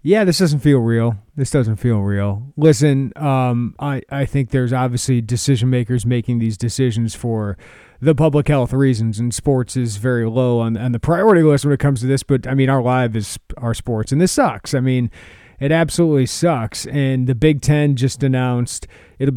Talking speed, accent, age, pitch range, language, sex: 200 wpm, American, 40-59, 120-145 Hz, English, male